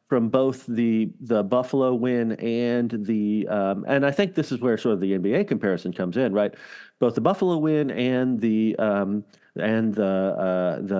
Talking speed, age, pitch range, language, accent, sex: 185 wpm, 40-59, 110-150 Hz, English, American, male